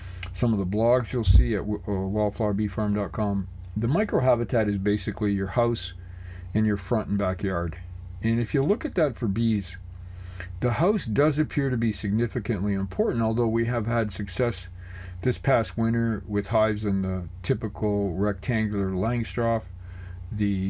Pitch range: 95-115 Hz